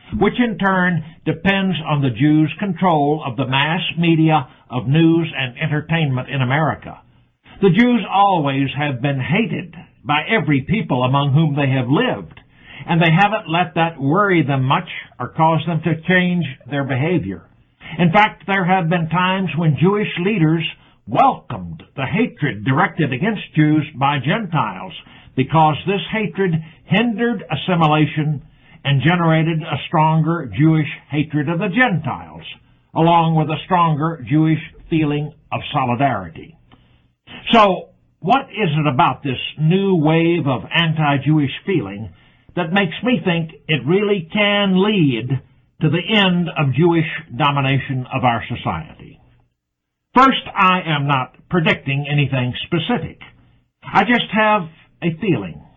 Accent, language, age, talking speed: American, English, 60-79, 135 wpm